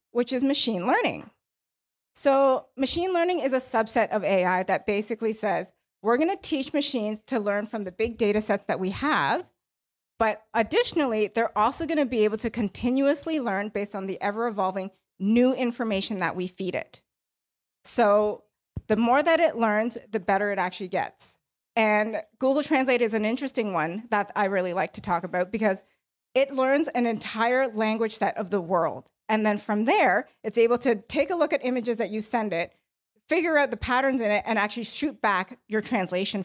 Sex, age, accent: female, 20-39, American